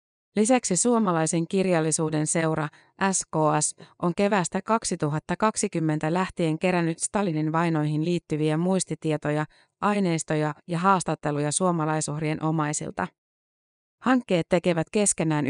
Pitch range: 155-185 Hz